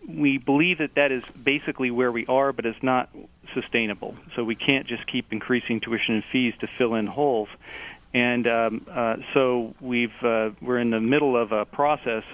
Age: 40-59